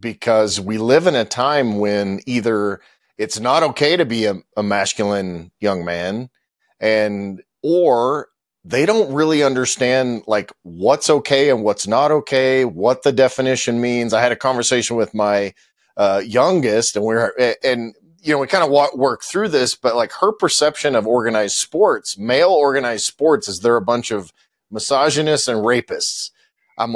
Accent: American